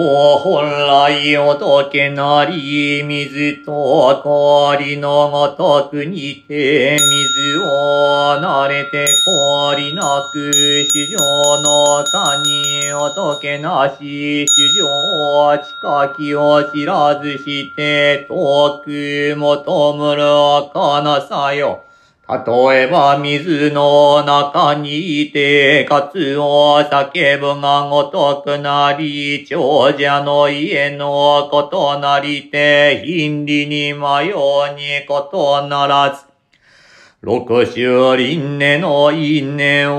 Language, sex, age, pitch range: Japanese, male, 40-59, 140-145 Hz